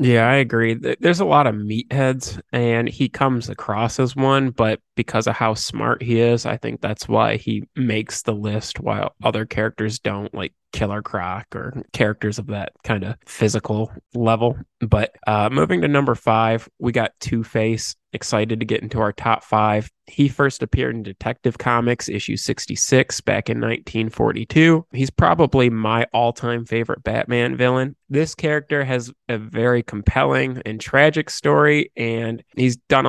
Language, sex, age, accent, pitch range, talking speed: English, male, 20-39, American, 110-130 Hz, 165 wpm